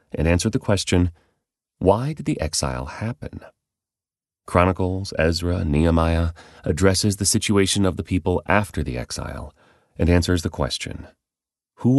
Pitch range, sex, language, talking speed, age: 75-95 Hz, male, English, 130 wpm, 30-49